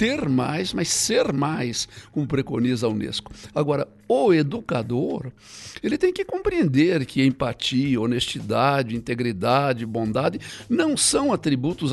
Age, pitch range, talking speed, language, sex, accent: 60-79, 115-145 Hz, 120 wpm, Portuguese, male, Brazilian